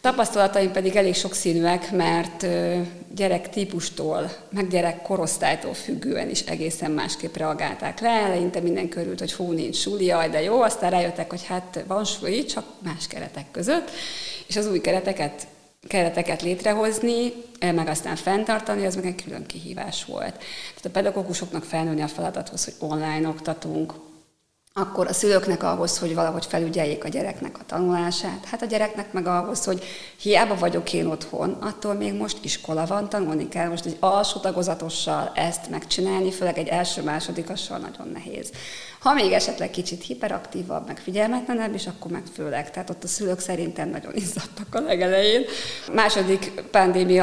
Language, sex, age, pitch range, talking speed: Hungarian, female, 30-49, 170-200 Hz, 155 wpm